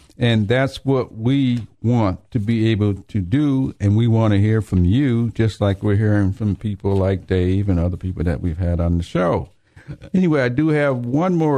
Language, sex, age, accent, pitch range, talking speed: English, male, 50-69, American, 115-150 Hz, 205 wpm